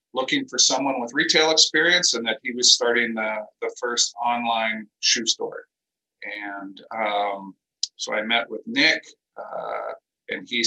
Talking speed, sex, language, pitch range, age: 150 wpm, male, French, 115-155 Hz, 50-69